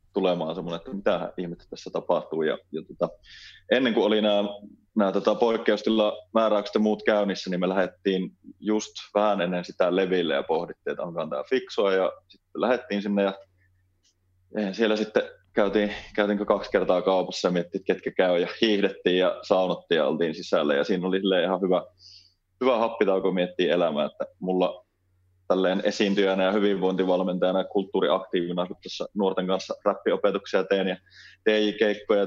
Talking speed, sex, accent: 145 wpm, male, native